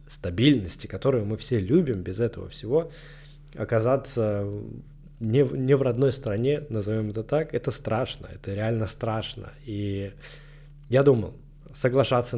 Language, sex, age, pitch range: Russian, male, 20-39, 110-140 Hz